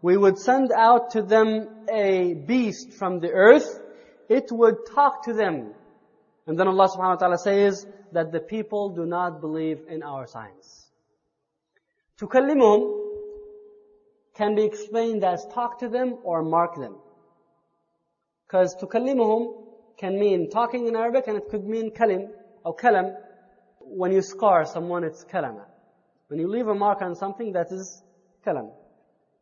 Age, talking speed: 20-39, 150 wpm